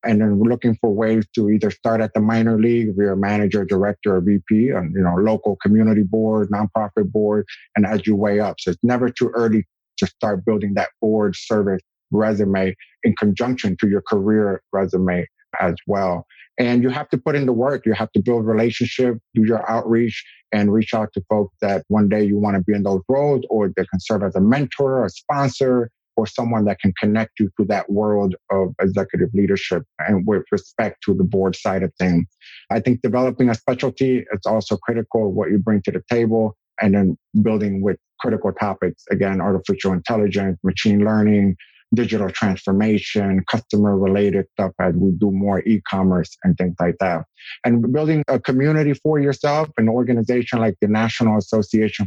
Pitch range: 100-120 Hz